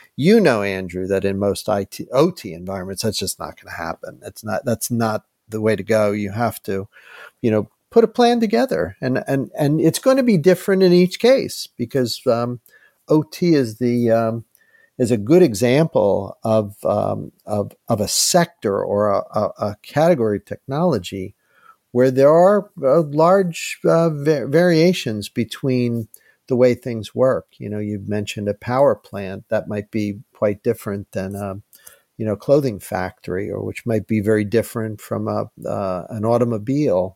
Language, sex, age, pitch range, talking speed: English, male, 50-69, 105-135 Hz, 170 wpm